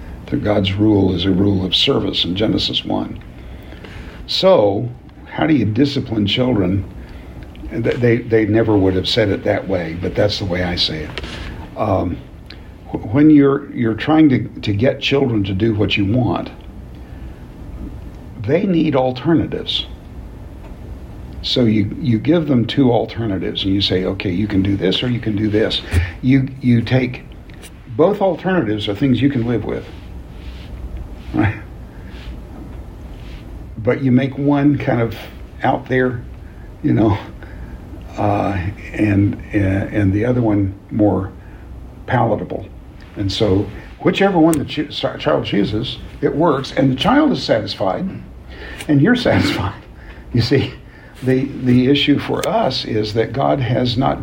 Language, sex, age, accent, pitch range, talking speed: English, male, 60-79, American, 95-130 Hz, 145 wpm